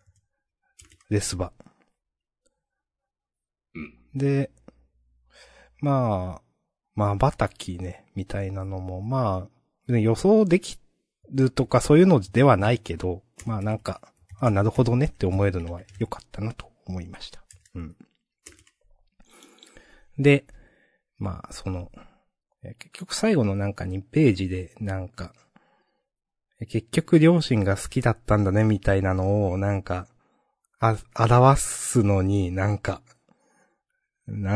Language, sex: Japanese, male